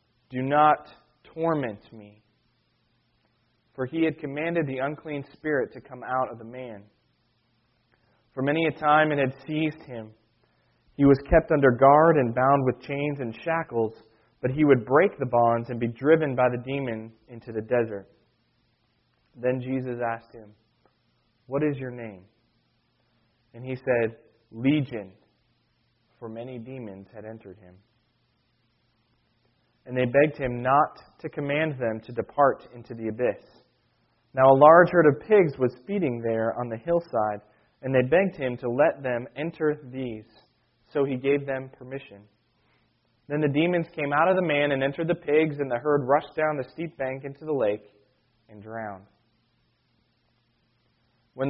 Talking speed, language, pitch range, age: 155 wpm, English, 115-145 Hz, 20-39